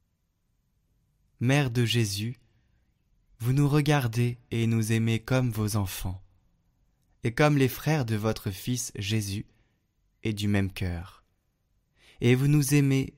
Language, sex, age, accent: French, male, 20-39, French